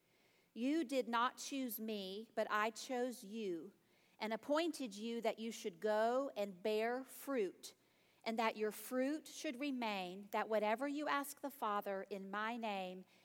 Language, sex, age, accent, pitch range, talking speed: English, female, 40-59, American, 215-280 Hz, 155 wpm